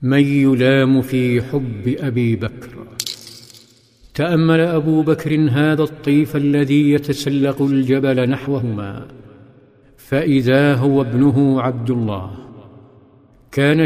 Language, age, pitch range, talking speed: Arabic, 50-69, 135-150 Hz, 90 wpm